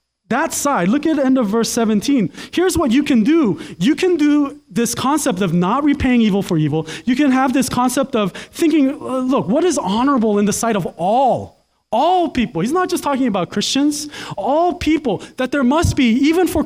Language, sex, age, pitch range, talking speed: English, male, 20-39, 180-280 Hz, 210 wpm